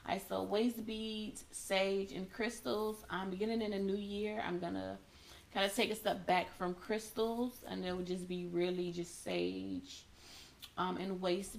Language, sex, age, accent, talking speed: English, female, 20-39, American, 180 wpm